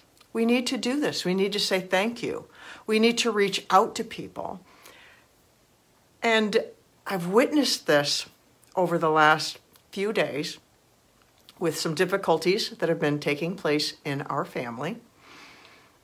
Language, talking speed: English, 140 wpm